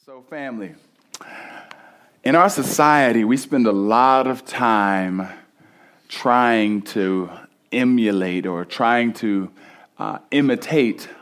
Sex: male